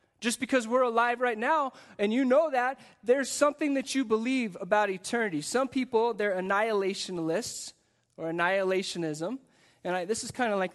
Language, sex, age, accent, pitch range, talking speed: English, male, 20-39, American, 160-205 Hz, 165 wpm